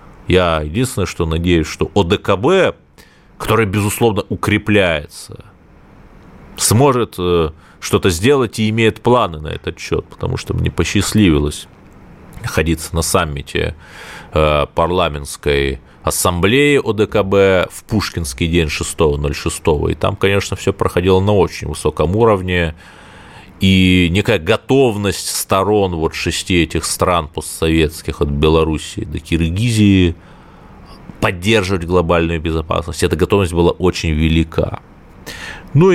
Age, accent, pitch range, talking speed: 30-49, native, 80-110 Hz, 105 wpm